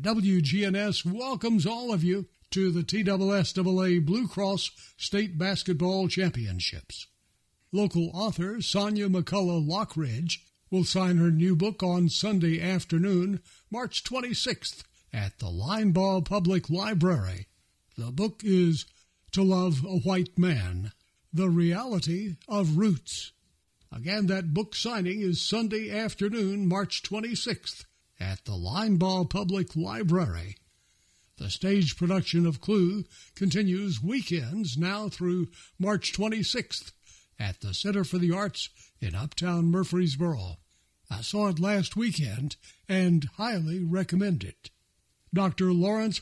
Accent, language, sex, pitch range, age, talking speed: American, English, male, 160-200 Hz, 60-79, 120 wpm